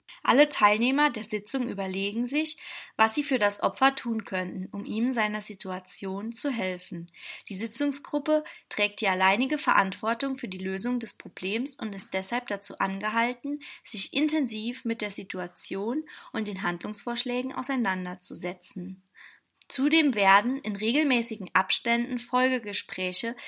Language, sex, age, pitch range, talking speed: German, female, 20-39, 200-265 Hz, 130 wpm